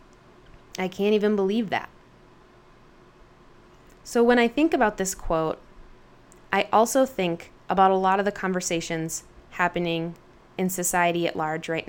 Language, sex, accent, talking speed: English, female, American, 135 wpm